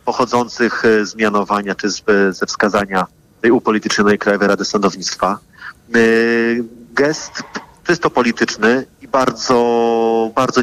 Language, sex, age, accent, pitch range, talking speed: Polish, male, 30-49, native, 105-120 Hz, 105 wpm